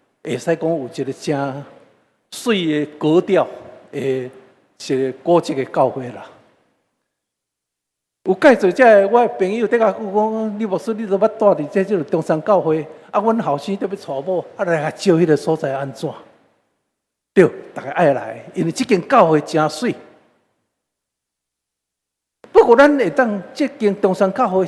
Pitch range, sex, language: 145-195 Hz, male, Chinese